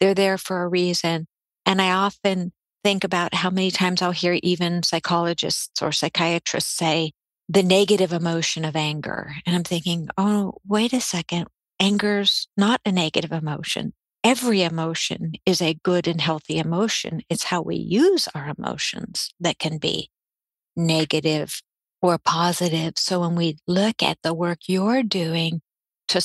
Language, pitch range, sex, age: English, 165-195 Hz, female, 50-69